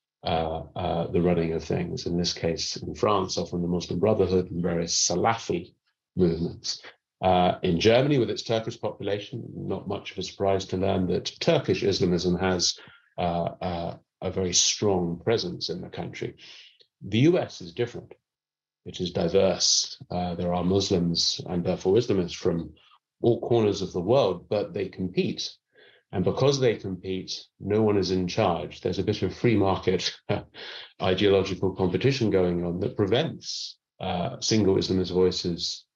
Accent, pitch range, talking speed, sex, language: British, 90-105 Hz, 155 wpm, male, English